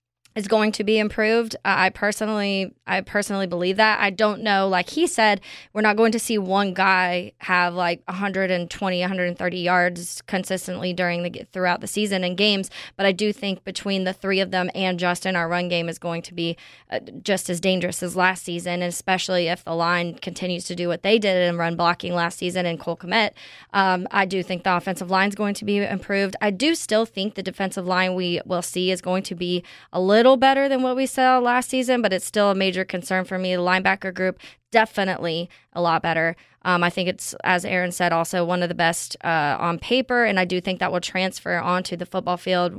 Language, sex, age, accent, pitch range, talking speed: English, female, 20-39, American, 175-200 Hz, 220 wpm